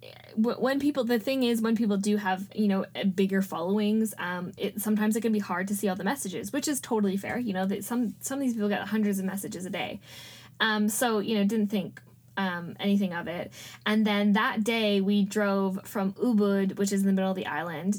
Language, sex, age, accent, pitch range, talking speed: English, female, 10-29, American, 195-245 Hz, 230 wpm